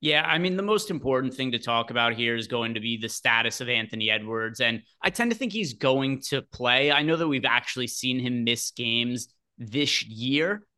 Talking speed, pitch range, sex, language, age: 225 wpm, 115-145 Hz, male, English, 30-49